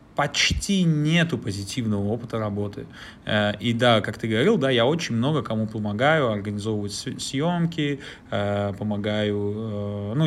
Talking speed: 125 wpm